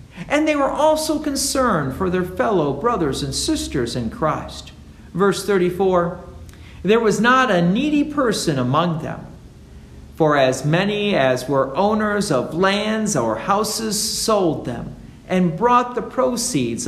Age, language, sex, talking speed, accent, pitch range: 50-69, English, male, 140 wpm, American, 130-215 Hz